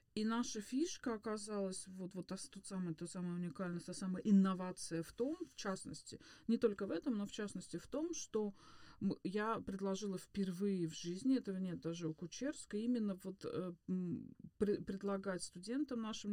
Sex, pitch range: female, 180-220 Hz